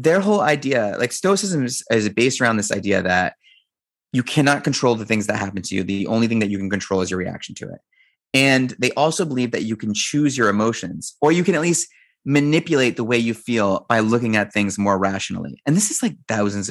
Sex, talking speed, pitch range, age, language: male, 225 wpm, 105-135 Hz, 30-49, English